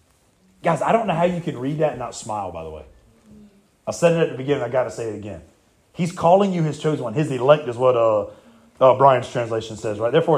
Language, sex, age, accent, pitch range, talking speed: English, male, 30-49, American, 120-160 Hz, 255 wpm